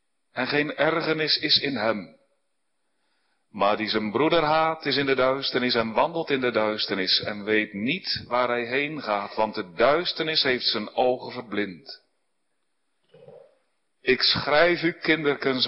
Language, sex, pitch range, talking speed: Dutch, male, 120-155 Hz, 145 wpm